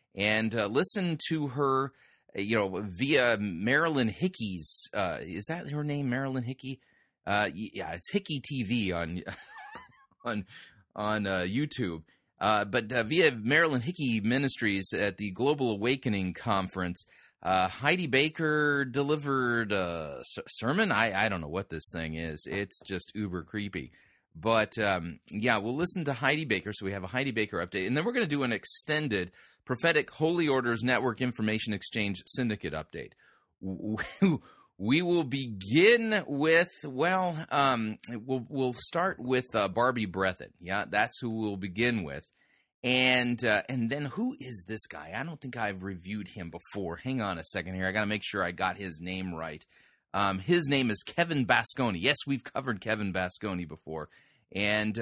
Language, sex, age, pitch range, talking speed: English, male, 30-49, 100-140 Hz, 165 wpm